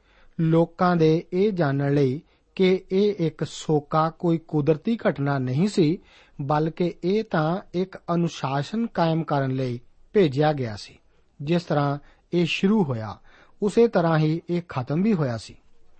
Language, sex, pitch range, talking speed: Punjabi, male, 145-190 Hz, 145 wpm